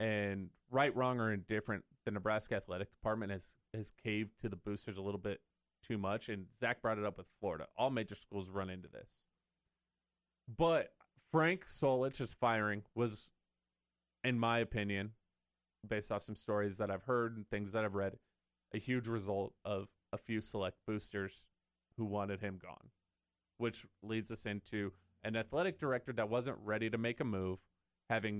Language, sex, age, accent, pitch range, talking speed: English, male, 30-49, American, 95-115 Hz, 170 wpm